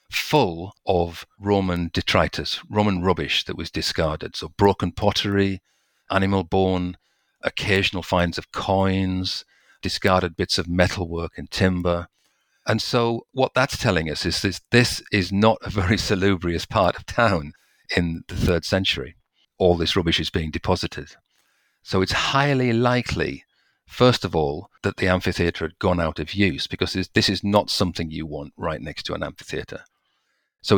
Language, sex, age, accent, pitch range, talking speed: English, male, 50-69, British, 85-105 Hz, 155 wpm